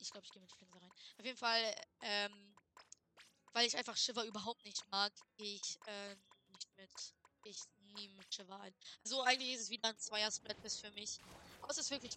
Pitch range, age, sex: 205-250 Hz, 20-39, female